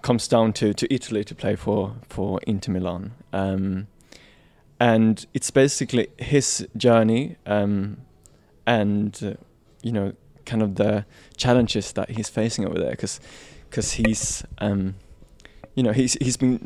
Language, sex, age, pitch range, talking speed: English, male, 20-39, 100-120 Hz, 140 wpm